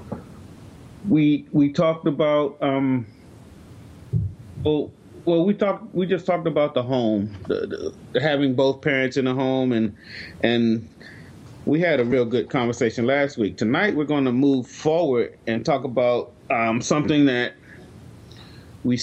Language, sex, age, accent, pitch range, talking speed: English, male, 30-49, American, 115-155 Hz, 145 wpm